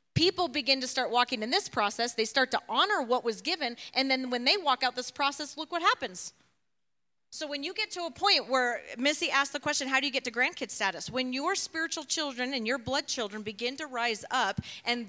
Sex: female